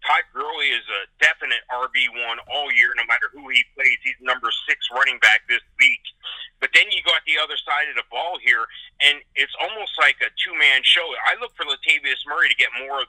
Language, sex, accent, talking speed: English, male, American, 215 wpm